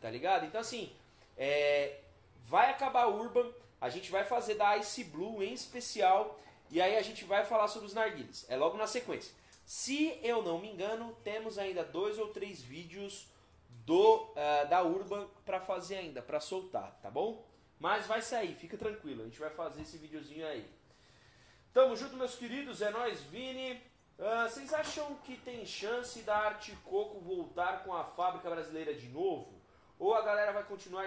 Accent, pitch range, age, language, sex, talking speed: Brazilian, 140-220 Hz, 20-39, Portuguese, male, 170 wpm